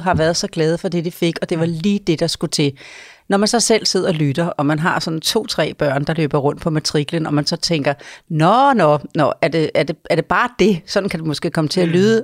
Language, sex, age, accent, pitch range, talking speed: Danish, female, 40-59, native, 165-210 Hz, 280 wpm